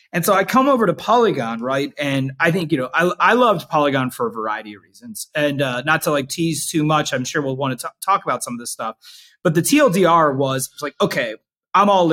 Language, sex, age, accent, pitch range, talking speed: English, male, 30-49, American, 135-180 Hz, 250 wpm